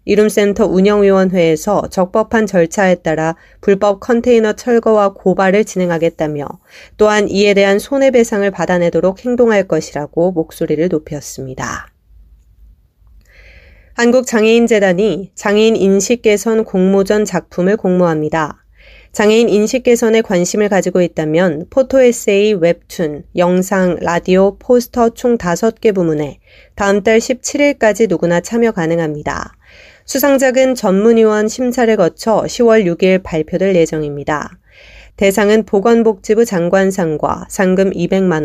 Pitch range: 170-225 Hz